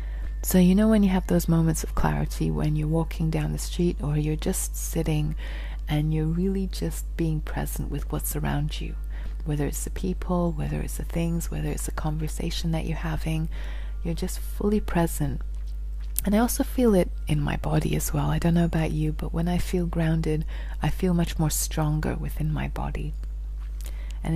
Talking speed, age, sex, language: 190 wpm, 30-49, female, English